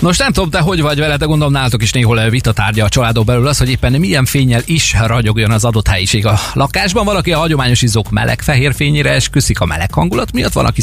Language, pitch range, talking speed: Hungarian, 100-135 Hz, 235 wpm